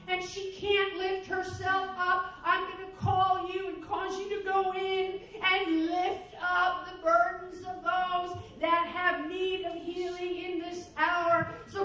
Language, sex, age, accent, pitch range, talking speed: English, female, 40-59, American, 320-385 Hz, 165 wpm